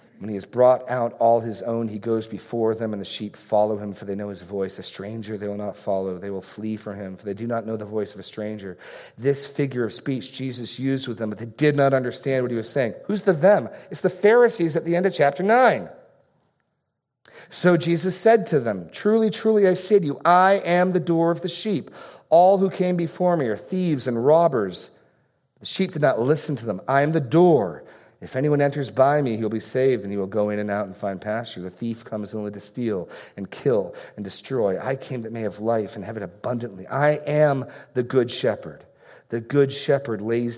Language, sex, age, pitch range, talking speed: English, male, 40-59, 105-150 Hz, 230 wpm